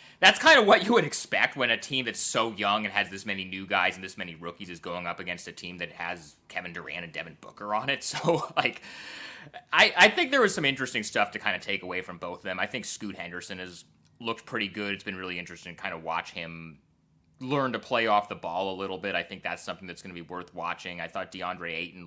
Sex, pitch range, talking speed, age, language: male, 85-115 Hz, 265 wpm, 30-49, English